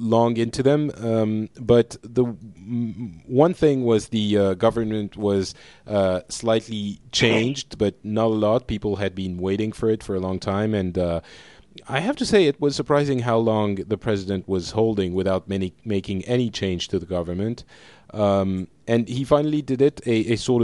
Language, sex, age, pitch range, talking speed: English, male, 30-49, 100-125 Hz, 185 wpm